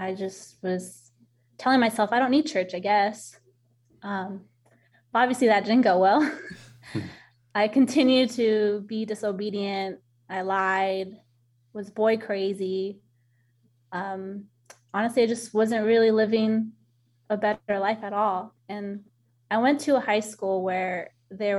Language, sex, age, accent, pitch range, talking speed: English, female, 20-39, American, 175-210 Hz, 135 wpm